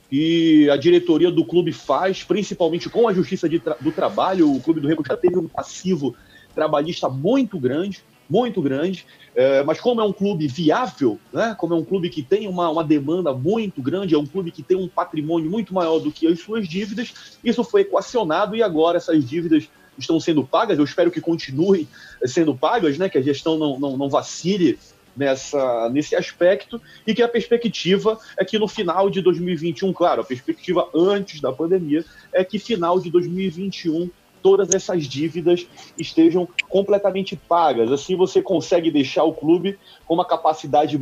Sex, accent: male, Brazilian